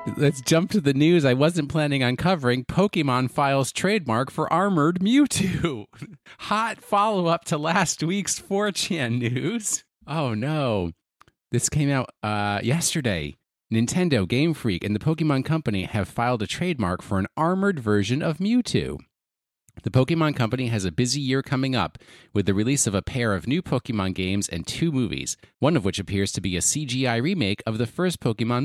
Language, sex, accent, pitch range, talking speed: English, male, American, 100-150 Hz, 170 wpm